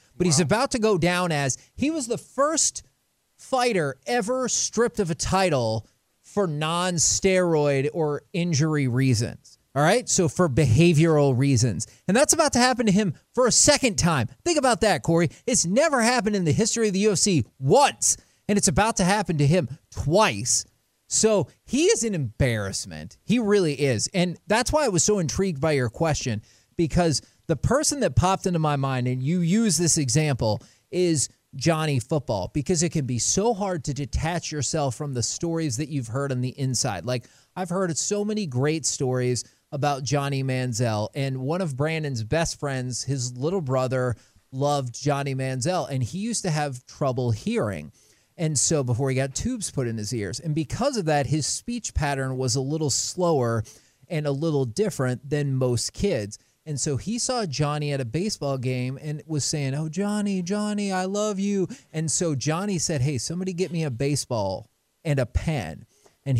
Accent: American